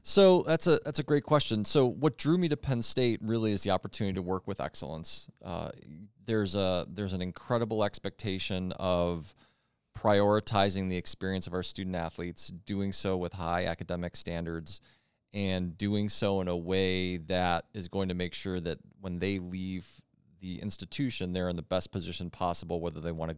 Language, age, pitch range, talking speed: English, 30-49, 90-105 Hz, 180 wpm